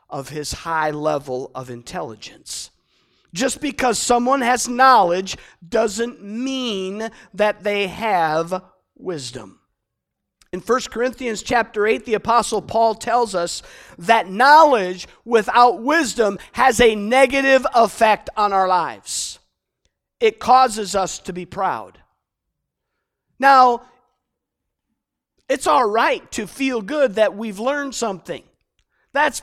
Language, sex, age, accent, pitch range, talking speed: English, male, 50-69, American, 215-270 Hz, 115 wpm